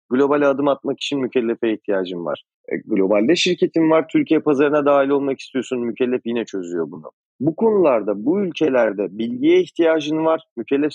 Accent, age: native, 40-59